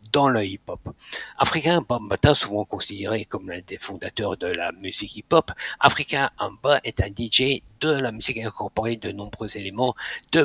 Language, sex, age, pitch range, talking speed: French, male, 60-79, 105-130 Hz, 160 wpm